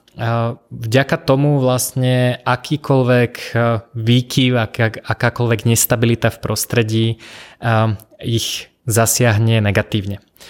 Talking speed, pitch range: 70 wpm, 110-125 Hz